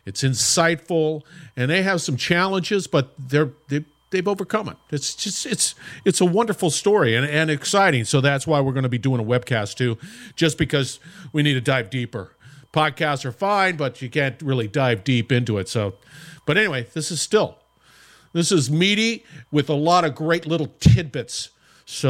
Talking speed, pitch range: 185 wpm, 125-165 Hz